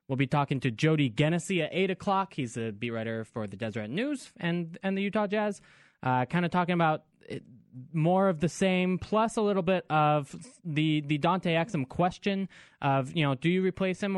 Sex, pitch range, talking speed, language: male, 135-180 Hz, 205 wpm, English